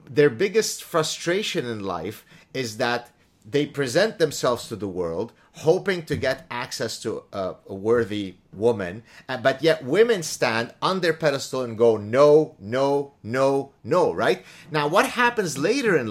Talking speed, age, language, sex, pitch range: 155 wpm, 30-49, English, male, 115-150 Hz